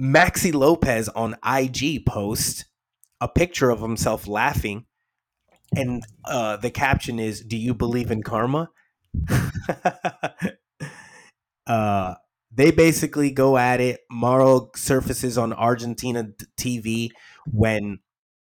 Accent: American